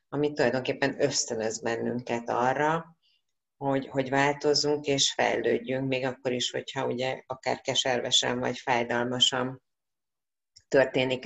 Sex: female